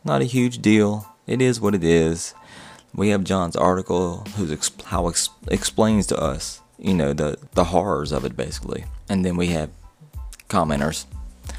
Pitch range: 75-90 Hz